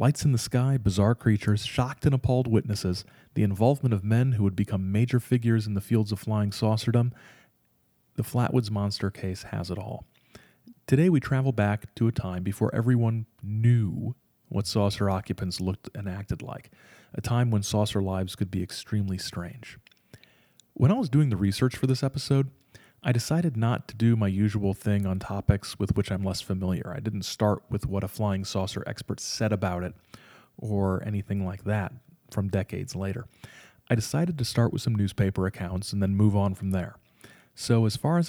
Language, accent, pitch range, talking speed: English, American, 100-120 Hz, 185 wpm